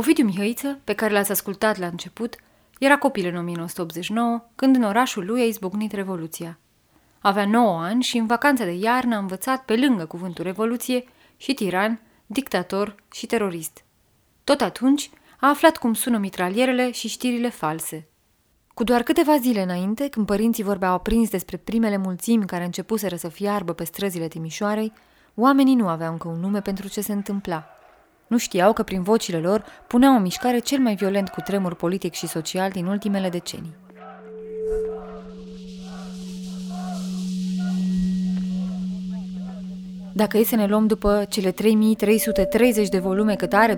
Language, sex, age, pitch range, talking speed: Romanian, female, 20-39, 185-225 Hz, 150 wpm